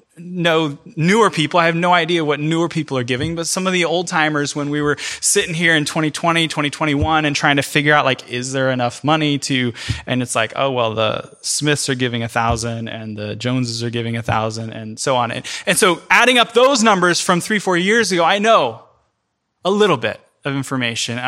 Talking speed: 215 wpm